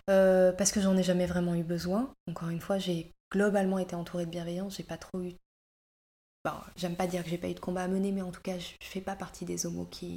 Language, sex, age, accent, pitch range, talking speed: French, female, 20-39, French, 175-205 Hz, 270 wpm